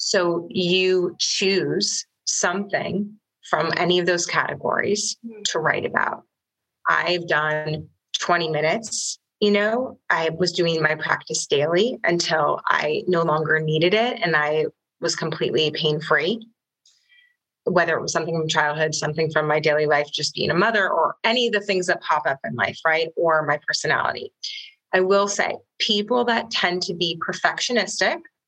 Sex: female